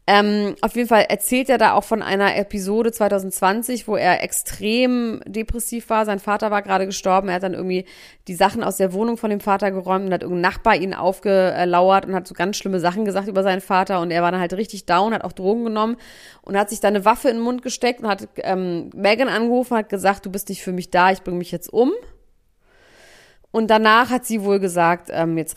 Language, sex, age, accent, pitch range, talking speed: German, female, 30-49, German, 180-215 Hz, 230 wpm